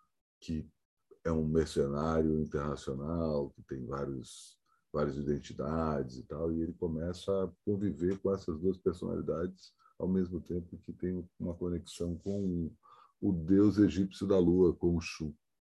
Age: 50-69